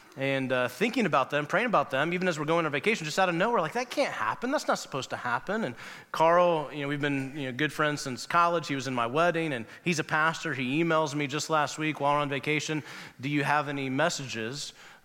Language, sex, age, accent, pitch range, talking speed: English, male, 30-49, American, 145-205 Hz, 245 wpm